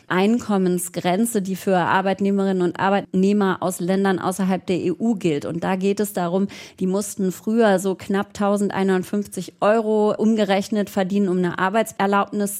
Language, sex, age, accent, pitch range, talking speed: German, female, 30-49, German, 190-215 Hz, 140 wpm